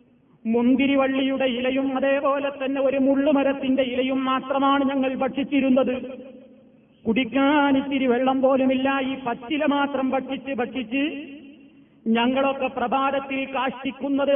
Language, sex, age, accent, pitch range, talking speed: Malayalam, male, 30-49, native, 265-275 Hz, 90 wpm